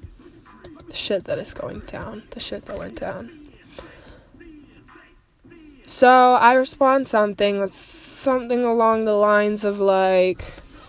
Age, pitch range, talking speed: 10-29, 195-245 Hz, 115 wpm